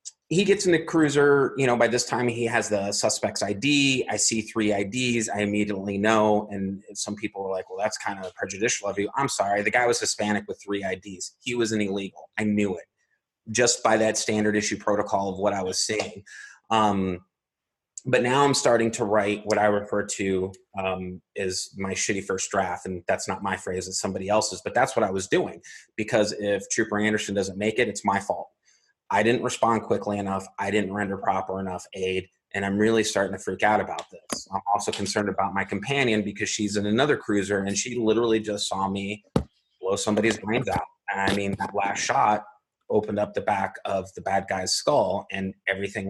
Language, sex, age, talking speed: English, male, 30-49, 210 wpm